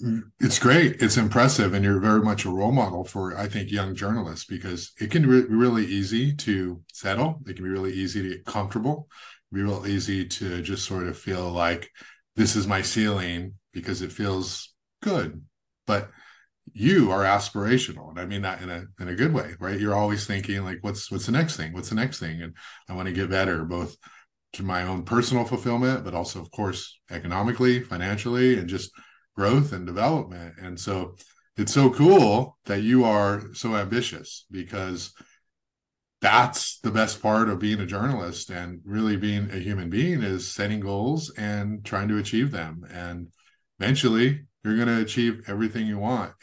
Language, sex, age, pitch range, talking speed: English, male, 30-49, 95-115 Hz, 185 wpm